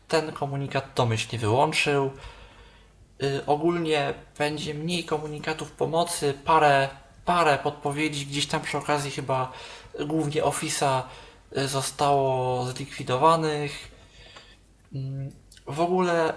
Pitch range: 135-155 Hz